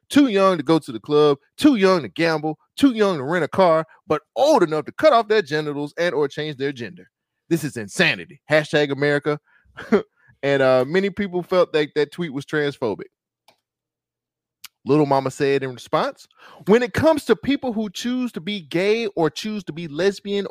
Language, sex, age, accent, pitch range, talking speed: English, male, 30-49, American, 140-190 Hz, 190 wpm